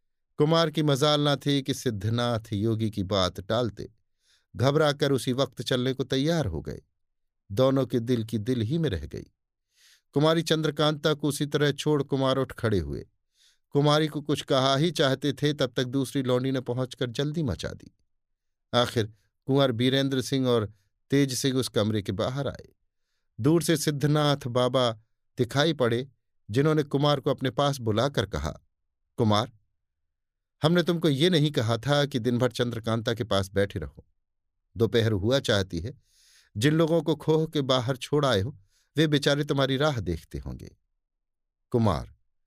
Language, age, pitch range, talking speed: Hindi, 50-69, 100-140 Hz, 160 wpm